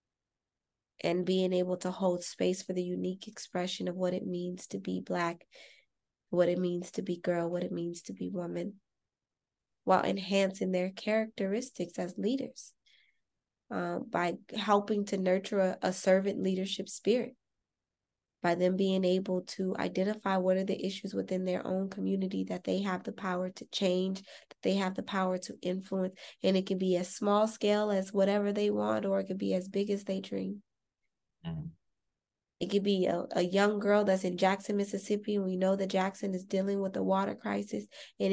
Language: English